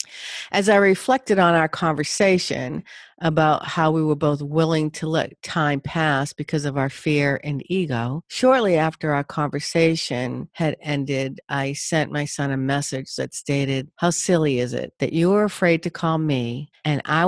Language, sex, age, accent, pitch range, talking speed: English, female, 50-69, American, 140-175 Hz, 170 wpm